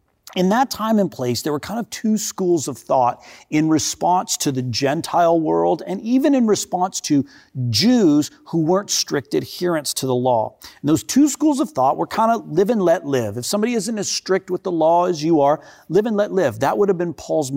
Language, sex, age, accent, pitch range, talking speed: English, male, 40-59, American, 135-195 Hz, 220 wpm